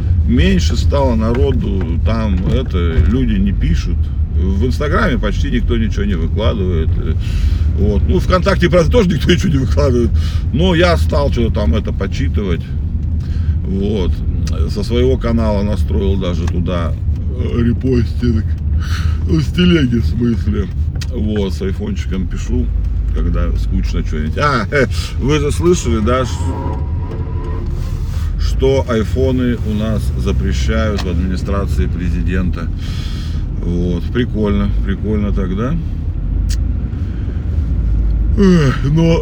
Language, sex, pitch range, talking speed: Russian, male, 80-100 Hz, 100 wpm